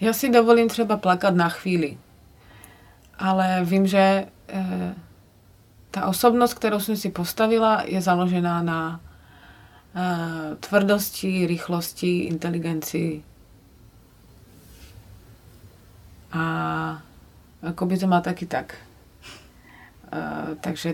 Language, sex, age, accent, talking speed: Czech, female, 30-49, native, 90 wpm